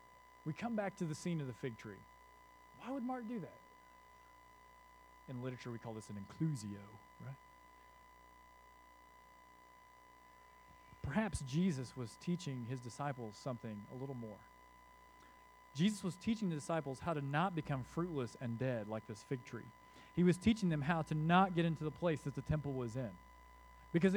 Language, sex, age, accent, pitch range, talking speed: English, male, 40-59, American, 140-225 Hz, 165 wpm